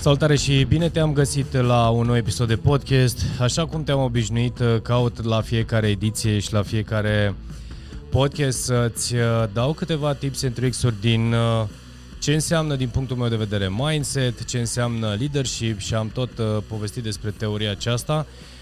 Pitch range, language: 105-130 Hz, Romanian